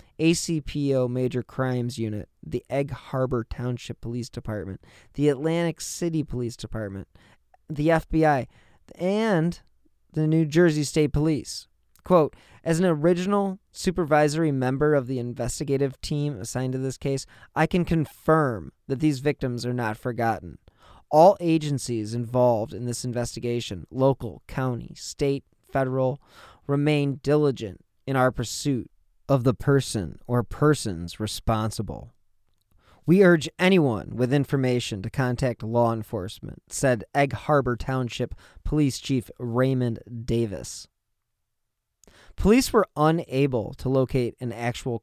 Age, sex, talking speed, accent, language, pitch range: 20-39, male, 120 wpm, American, English, 115-145 Hz